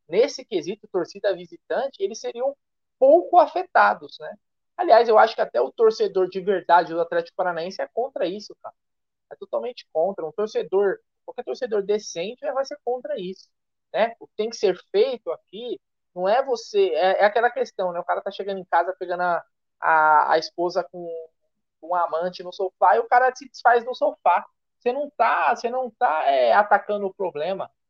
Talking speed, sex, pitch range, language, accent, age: 185 wpm, male, 190-270 Hz, Portuguese, Brazilian, 20-39